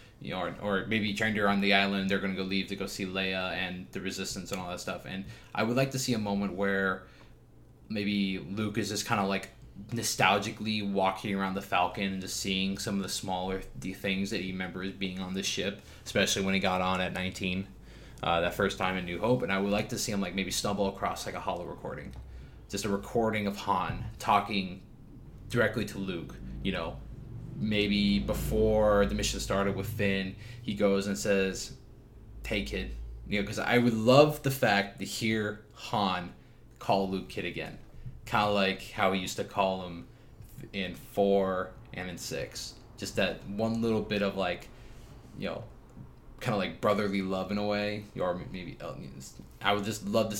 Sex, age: male, 20-39